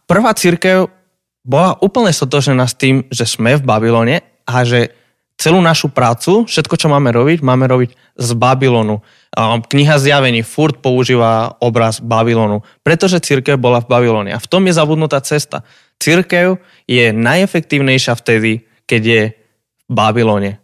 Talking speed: 140 wpm